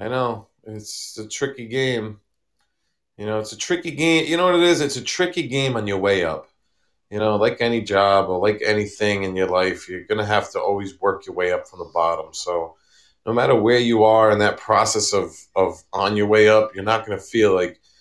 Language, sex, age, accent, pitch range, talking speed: English, male, 30-49, American, 105-140 Hz, 235 wpm